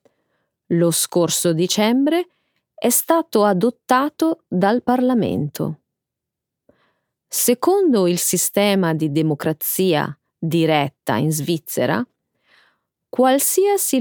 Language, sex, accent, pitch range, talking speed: Italian, female, native, 165-255 Hz, 75 wpm